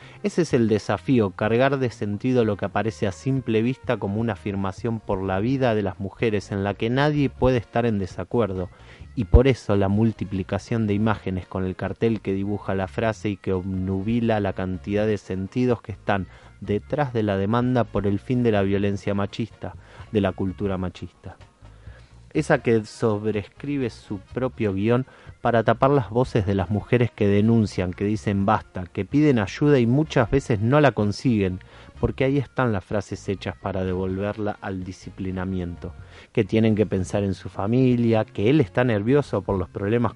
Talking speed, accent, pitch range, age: 180 wpm, Argentinian, 95-120 Hz, 30-49